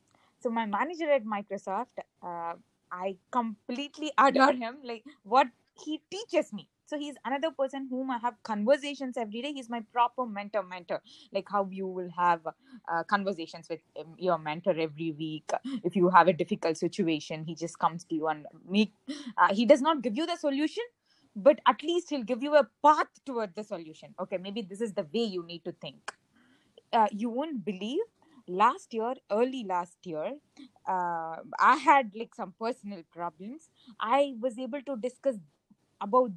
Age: 20-39